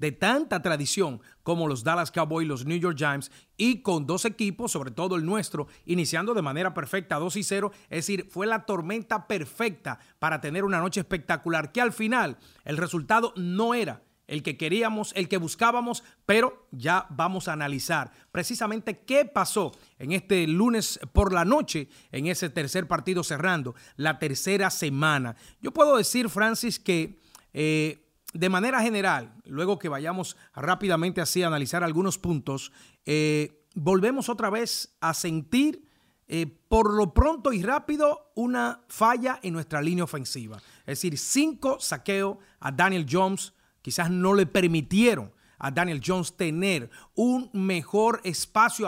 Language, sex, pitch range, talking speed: Spanish, male, 155-215 Hz, 155 wpm